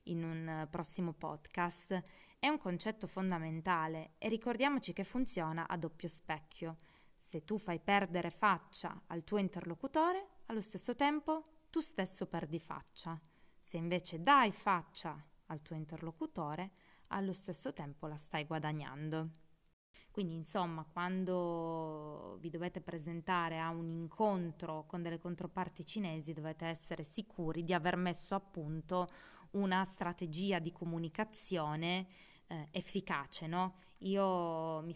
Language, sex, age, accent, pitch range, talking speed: Italian, female, 20-39, native, 160-185 Hz, 125 wpm